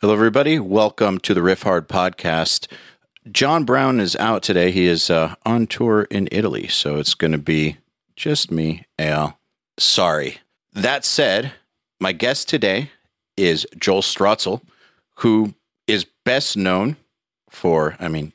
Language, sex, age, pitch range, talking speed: English, male, 40-59, 80-100 Hz, 145 wpm